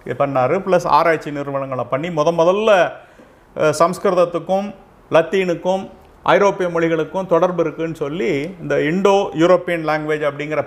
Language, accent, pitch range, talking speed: Tamil, native, 155-225 Hz, 105 wpm